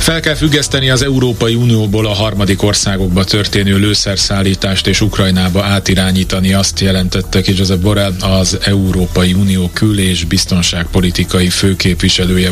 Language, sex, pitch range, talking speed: Hungarian, male, 90-110 Hz, 125 wpm